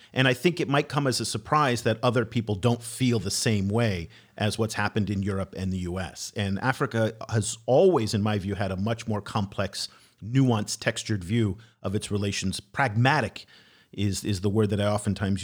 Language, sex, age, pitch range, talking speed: English, male, 40-59, 105-130 Hz, 200 wpm